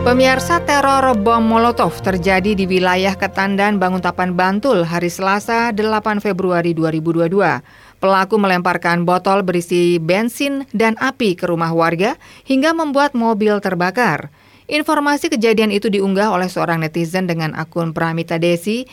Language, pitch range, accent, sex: Indonesian, 175-225 Hz, native, female